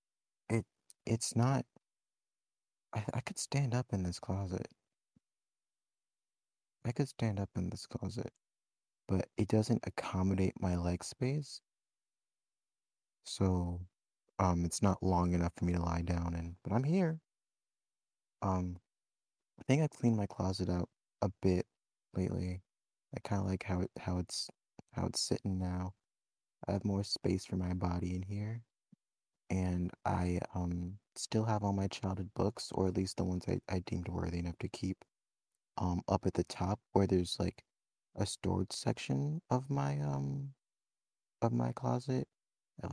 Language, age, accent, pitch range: English, 30-49, American, 90-110 Hz